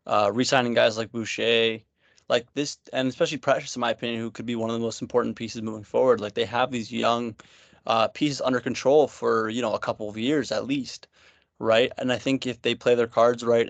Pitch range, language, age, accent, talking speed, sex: 115-130 Hz, English, 20-39, American, 230 wpm, male